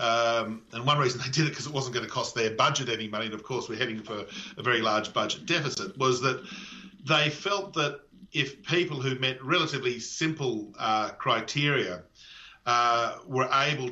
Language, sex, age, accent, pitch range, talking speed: English, male, 50-69, Australian, 120-145 Hz, 190 wpm